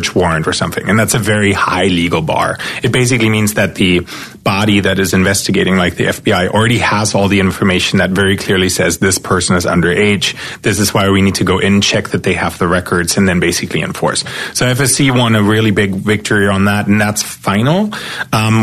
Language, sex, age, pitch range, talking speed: English, male, 30-49, 95-115 Hz, 215 wpm